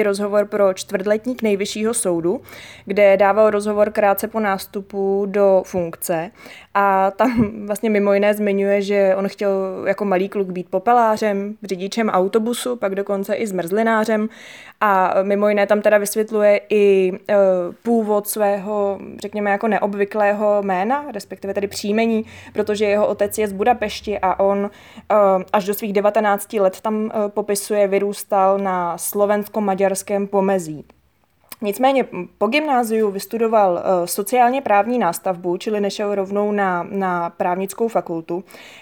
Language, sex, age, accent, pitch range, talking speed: Czech, female, 20-39, native, 195-220 Hz, 125 wpm